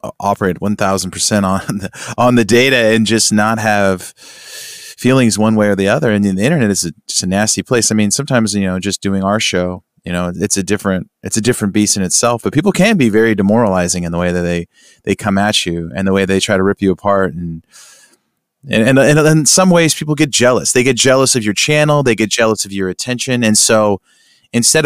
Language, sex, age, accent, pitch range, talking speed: English, male, 30-49, American, 100-125 Hz, 225 wpm